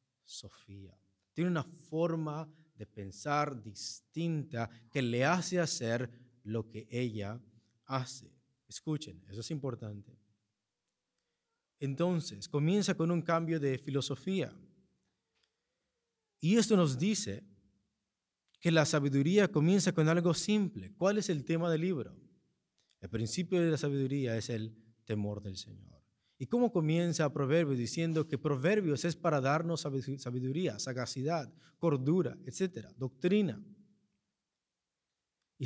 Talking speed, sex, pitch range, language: 115 wpm, male, 120-165 Hz, Spanish